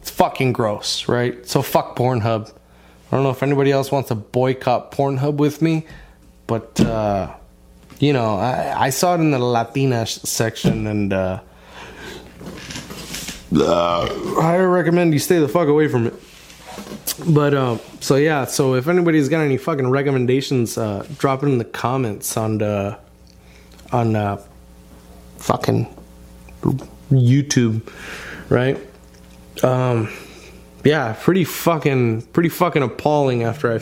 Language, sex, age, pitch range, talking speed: English, male, 20-39, 105-135 Hz, 135 wpm